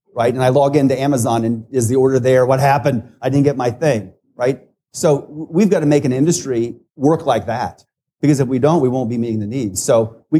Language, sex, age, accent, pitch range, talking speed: English, male, 40-59, American, 115-145 Hz, 235 wpm